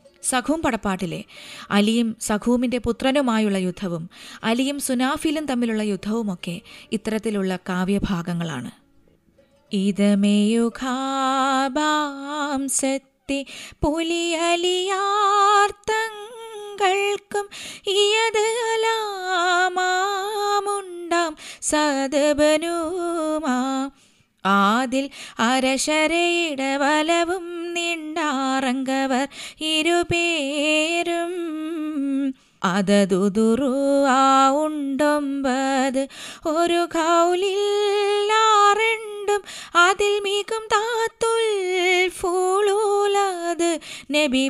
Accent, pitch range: native, 265-345 Hz